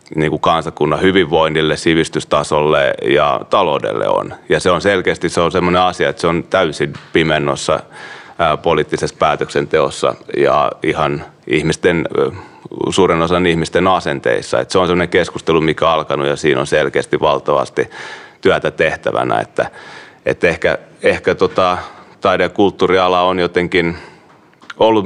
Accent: native